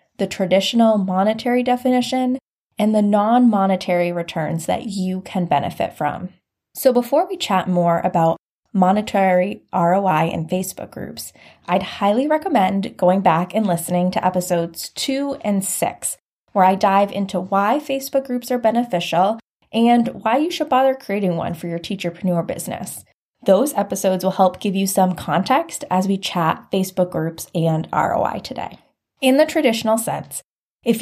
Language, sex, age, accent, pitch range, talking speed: English, female, 10-29, American, 180-245 Hz, 150 wpm